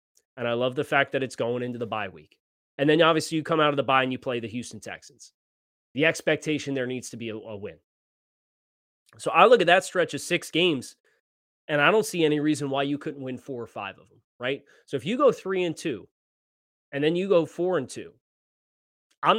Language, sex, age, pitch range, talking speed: English, male, 30-49, 125-165 Hz, 235 wpm